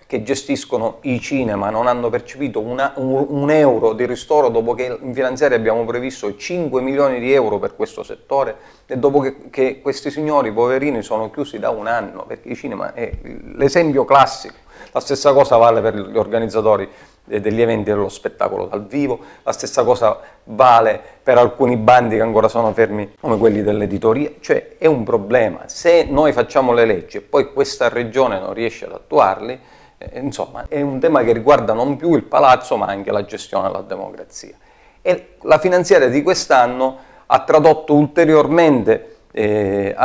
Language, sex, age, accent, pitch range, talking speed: Italian, male, 40-59, native, 115-170 Hz, 170 wpm